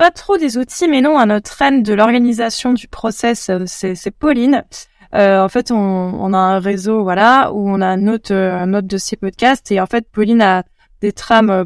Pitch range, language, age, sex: 190-225 Hz, French, 20-39, female